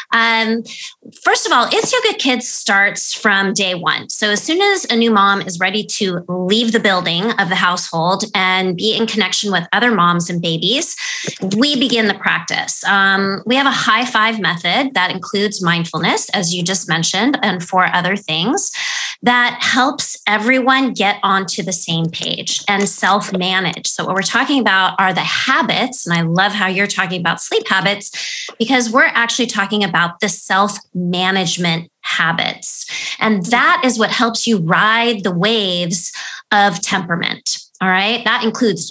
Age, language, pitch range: 20-39, English, 185-240 Hz